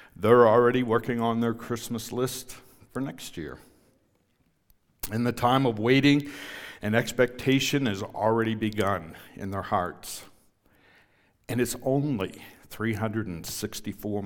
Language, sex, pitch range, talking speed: English, male, 105-125 Hz, 115 wpm